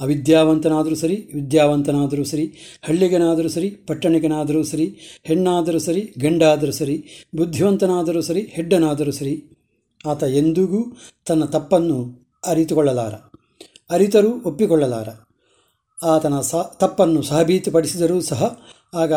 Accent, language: native, Kannada